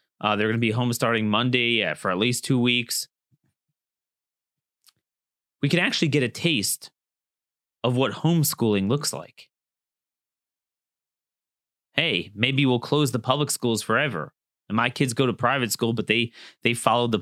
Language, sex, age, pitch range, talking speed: English, male, 30-49, 115-150 Hz, 155 wpm